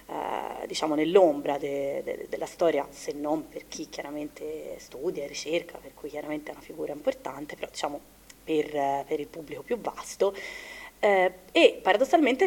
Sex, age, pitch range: female, 30-49, 150-200 Hz